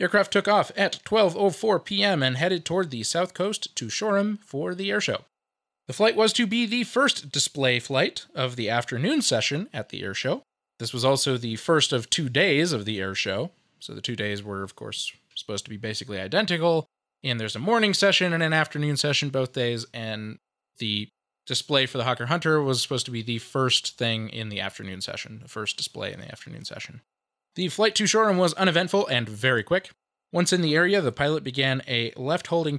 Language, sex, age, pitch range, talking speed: English, male, 20-39, 120-195 Hz, 205 wpm